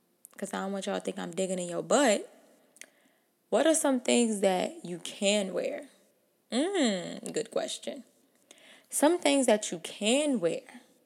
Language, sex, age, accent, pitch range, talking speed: English, female, 20-39, American, 185-260 Hz, 155 wpm